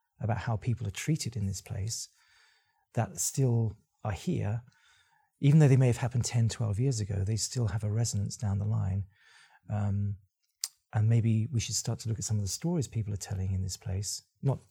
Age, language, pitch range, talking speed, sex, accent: 40-59, English, 105-125 Hz, 205 wpm, male, British